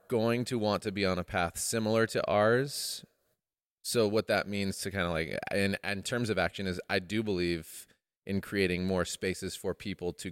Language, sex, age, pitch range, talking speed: English, male, 30-49, 90-105 Hz, 205 wpm